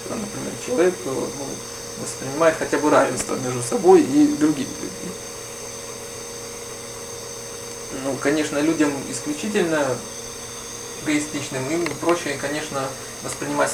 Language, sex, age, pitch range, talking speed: Russian, male, 20-39, 135-165 Hz, 85 wpm